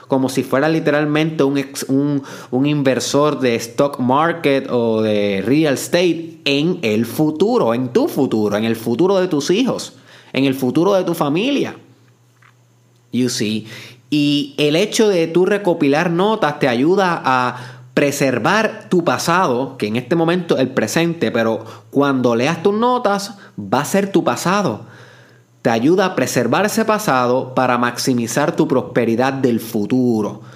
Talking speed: 150 wpm